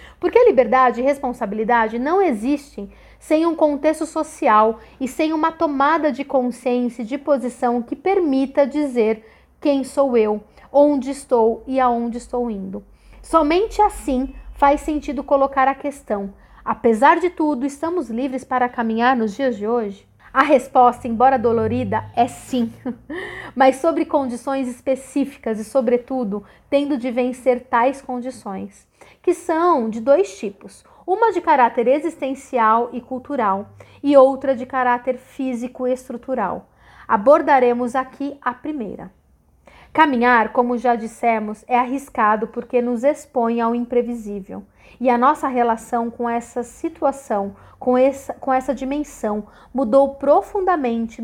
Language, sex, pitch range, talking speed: Portuguese, female, 235-285 Hz, 130 wpm